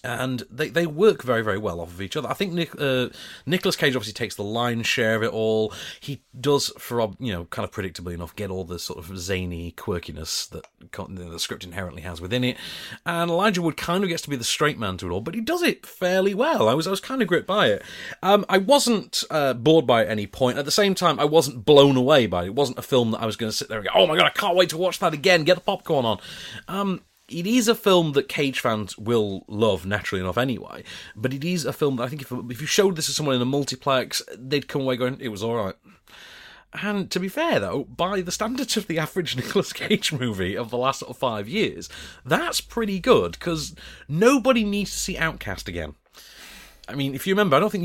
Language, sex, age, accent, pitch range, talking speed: English, male, 30-49, British, 110-180 Hz, 255 wpm